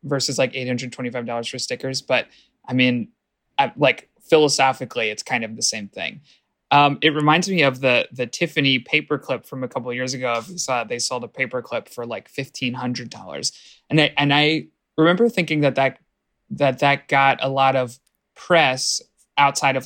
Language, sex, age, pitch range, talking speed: English, male, 20-39, 125-145 Hz, 195 wpm